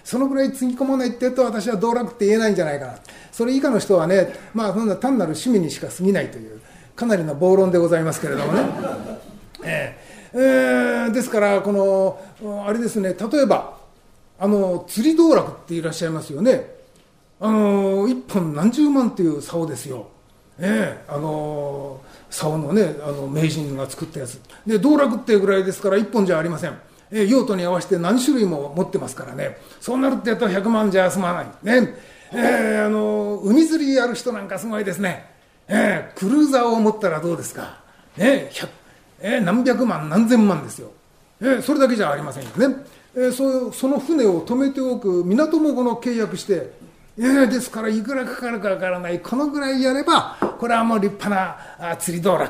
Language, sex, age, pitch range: Japanese, male, 40-59, 175-245 Hz